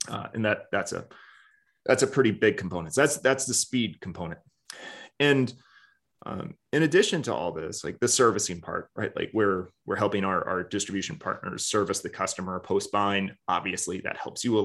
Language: English